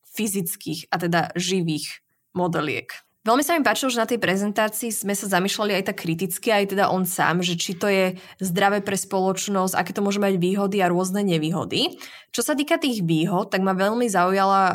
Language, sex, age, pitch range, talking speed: Slovak, female, 20-39, 175-210 Hz, 190 wpm